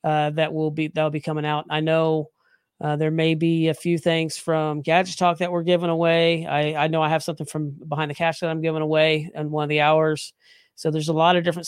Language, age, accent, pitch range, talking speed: English, 40-59, American, 150-175 Hz, 250 wpm